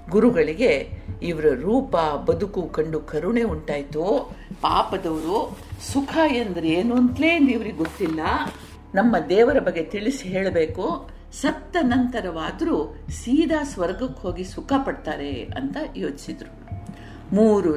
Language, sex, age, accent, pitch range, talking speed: Kannada, female, 50-69, native, 160-250 Hz, 100 wpm